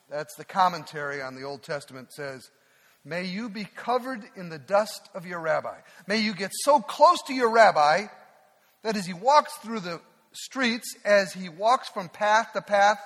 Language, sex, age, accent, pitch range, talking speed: English, male, 50-69, American, 170-225 Hz, 185 wpm